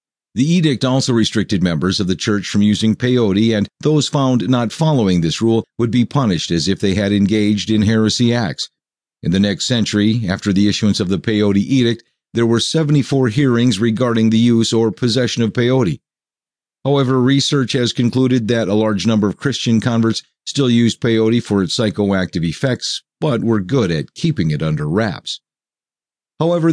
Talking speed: 175 wpm